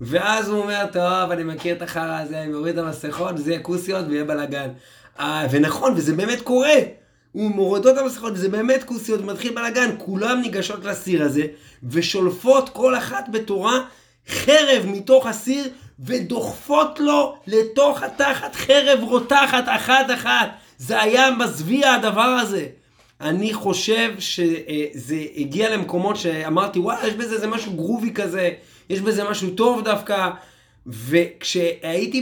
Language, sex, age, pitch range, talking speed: Hebrew, male, 30-49, 170-230 Hz, 135 wpm